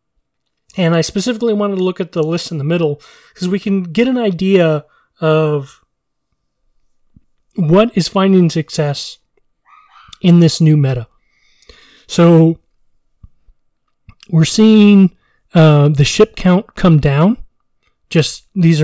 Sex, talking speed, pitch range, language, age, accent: male, 120 wpm, 140-170 Hz, English, 30-49, American